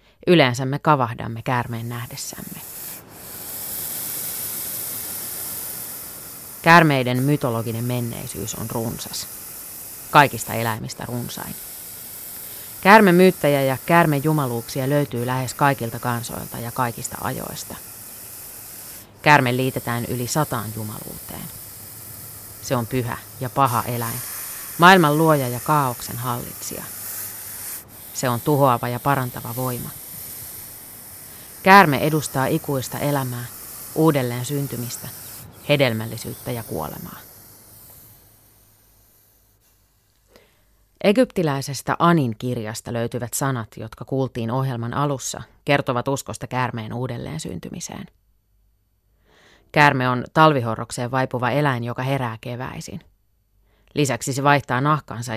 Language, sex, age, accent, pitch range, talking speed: Finnish, female, 30-49, native, 110-140 Hz, 85 wpm